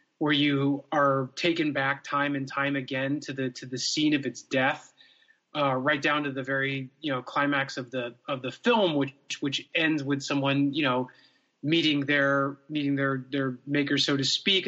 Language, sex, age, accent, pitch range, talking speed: English, male, 30-49, American, 130-155 Hz, 190 wpm